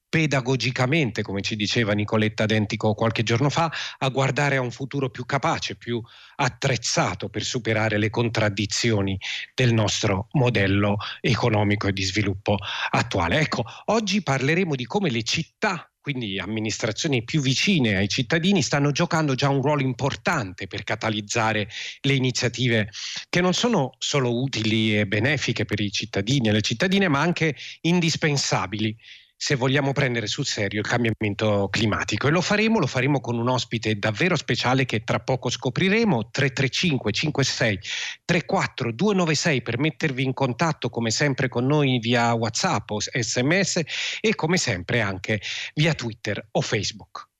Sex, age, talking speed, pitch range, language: male, 40-59, 145 wpm, 105-140 Hz, Italian